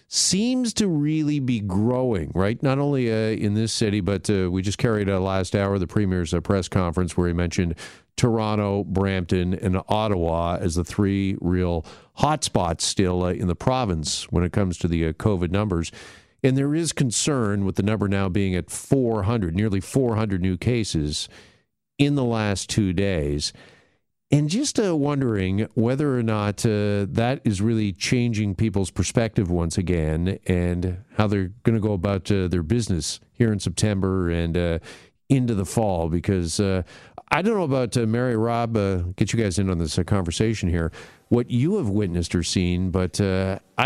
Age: 50-69